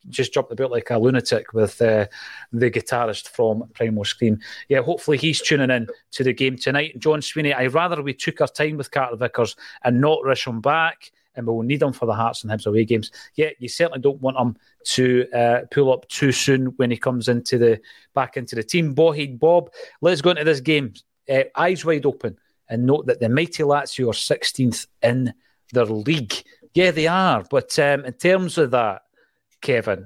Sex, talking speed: male, 205 wpm